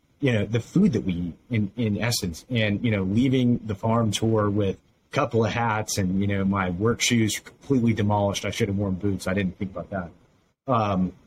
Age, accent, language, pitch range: 30-49, American, English, 95-115 Hz